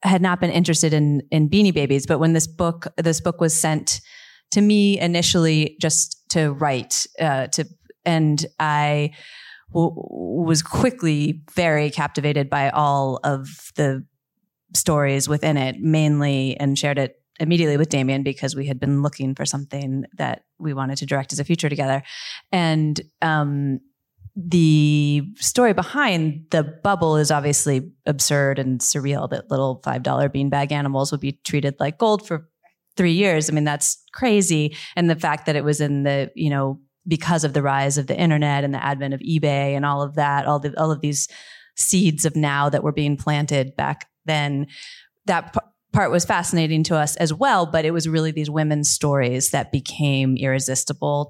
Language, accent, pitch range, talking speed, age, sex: English, American, 140-165 Hz, 170 wpm, 30-49, female